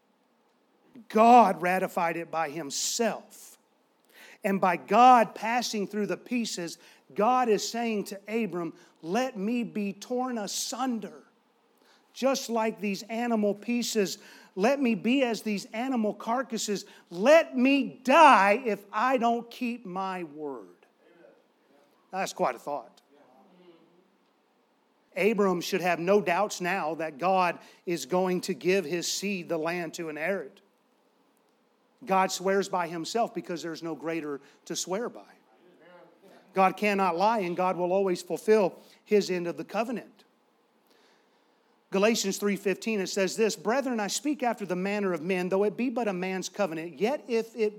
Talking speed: 140 wpm